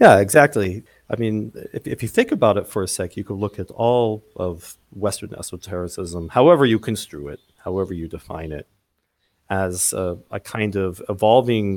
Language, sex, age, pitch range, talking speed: English, male, 40-59, 85-110 Hz, 180 wpm